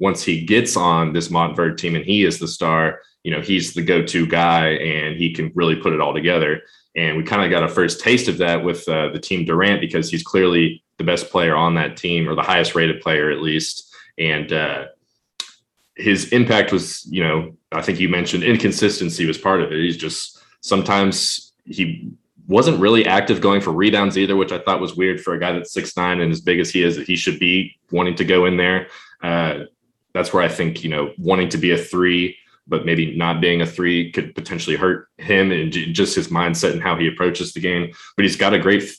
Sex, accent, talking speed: male, American, 225 wpm